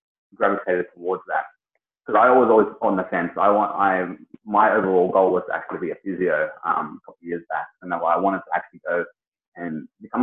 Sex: male